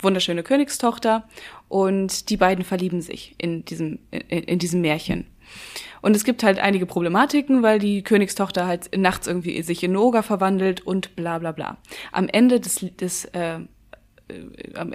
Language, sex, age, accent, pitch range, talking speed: German, female, 20-39, German, 175-205 Hz, 160 wpm